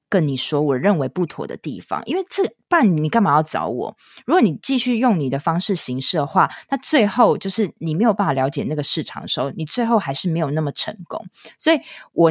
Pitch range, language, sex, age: 145-210 Hz, Chinese, female, 20-39